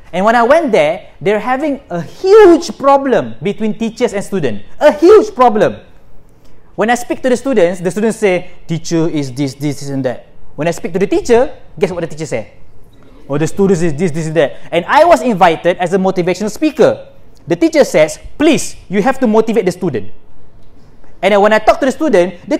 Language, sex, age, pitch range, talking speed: Malay, male, 20-39, 150-235 Hz, 205 wpm